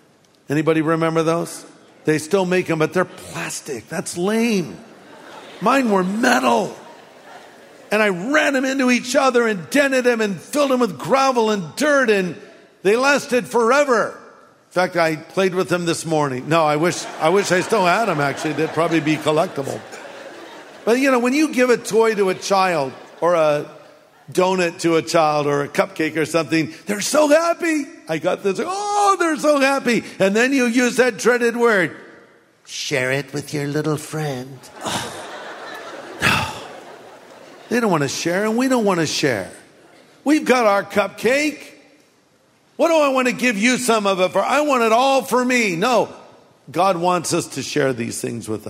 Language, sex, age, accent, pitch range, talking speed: English, male, 50-69, American, 150-225 Hz, 185 wpm